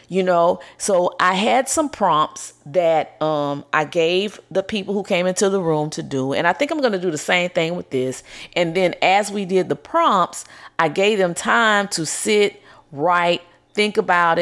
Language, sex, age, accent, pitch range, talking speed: English, female, 30-49, American, 155-195 Hz, 200 wpm